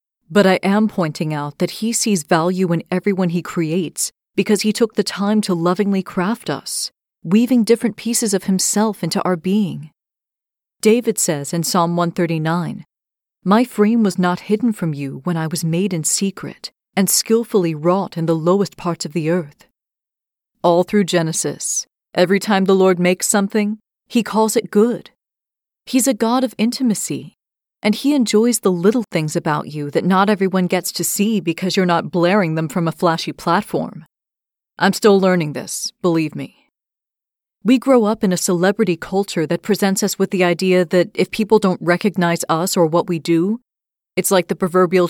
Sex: female